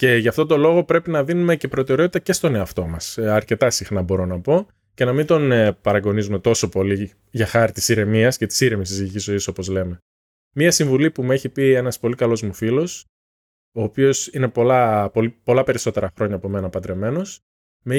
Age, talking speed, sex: 20-39, 195 wpm, male